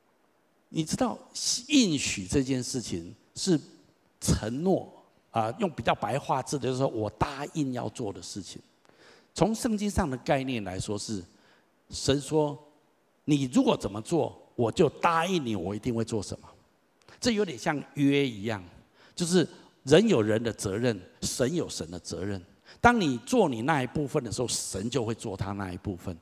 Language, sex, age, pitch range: Chinese, male, 60-79, 105-145 Hz